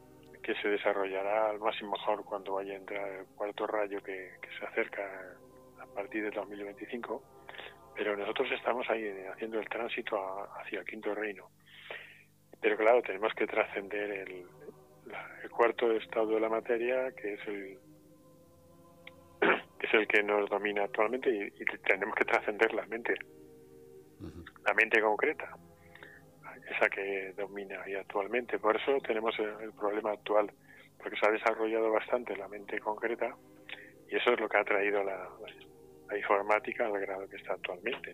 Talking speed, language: 155 wpm, Spanish